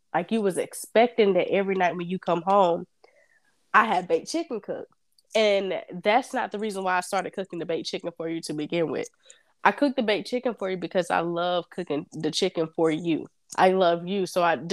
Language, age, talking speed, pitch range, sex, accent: English, 10-29, 215 wpm, 170-215 Hz, female, American